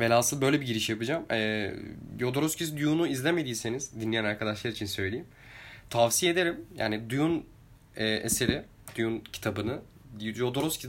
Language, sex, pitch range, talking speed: Turkish, male, 115-145 Hz, 120 wpm